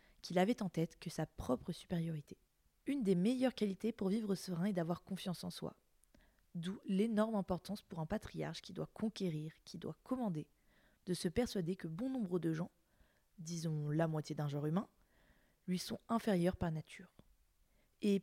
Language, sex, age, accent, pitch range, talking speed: French, female, 20-39, French, 170-205 Hz, 170 wpm